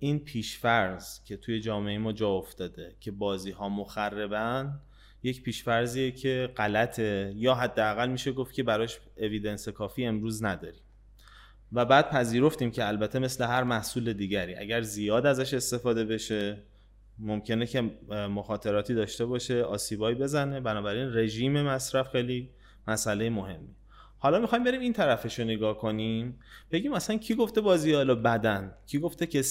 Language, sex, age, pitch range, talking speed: Persian, male, 20-39, 105-130 Hz, 145 wpm